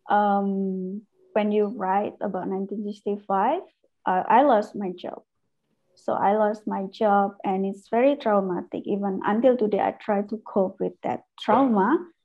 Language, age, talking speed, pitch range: English, 20-39, 145 wpm, 195-235 Hz